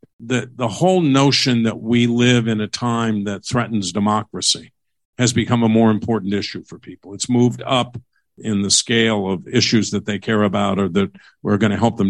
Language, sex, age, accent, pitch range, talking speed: English, male, 50-69, American, 105-135 Hz, 200 wpm